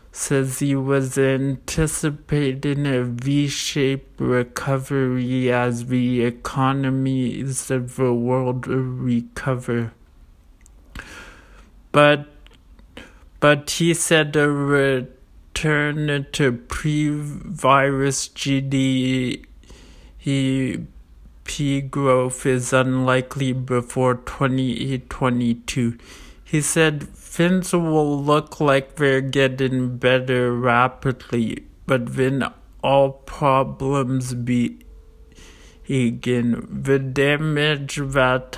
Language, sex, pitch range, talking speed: English, male, 125-140 Hz, 75 wpm